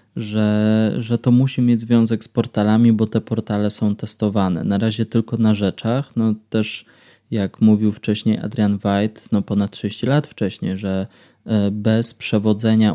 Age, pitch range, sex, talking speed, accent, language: 20-39, 105-115 Hz, male, 155 wpm, native, Polish